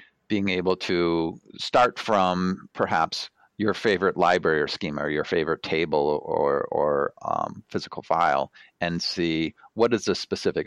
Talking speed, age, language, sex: 145 wpm, 40-59, English, male